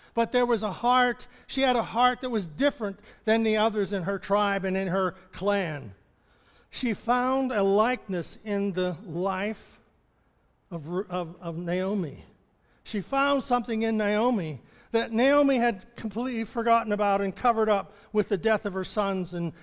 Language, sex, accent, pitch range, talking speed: English, male, American, 175-225 Hz, 165 wpm